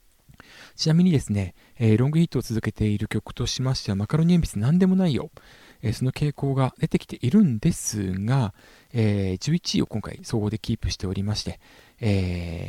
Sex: male